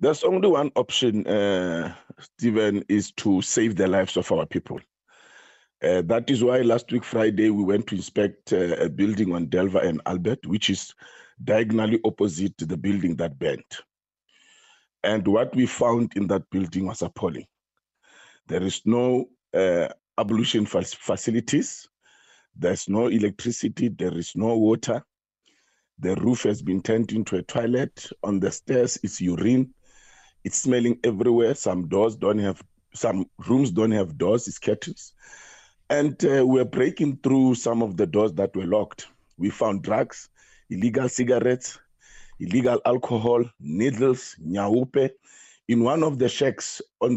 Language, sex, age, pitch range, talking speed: English, male, 50-69, 100-125 Hz, 150 wpm